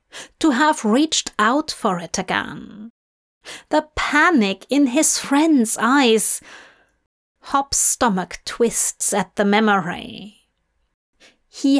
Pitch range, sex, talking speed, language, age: 225-310 Hz, female, 100 wpm, English, 30-49